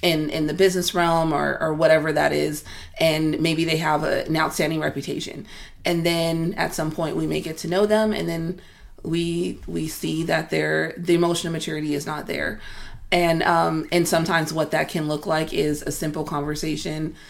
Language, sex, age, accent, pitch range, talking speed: English, female, 30-49, American, 150-170 Hz, 190 wpm